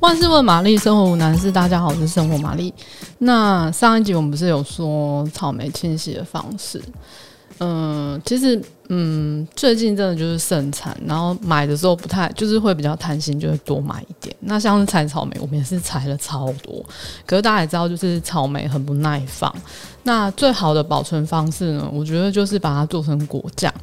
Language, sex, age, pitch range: Chinese, female, 20-39, 150-190 Hz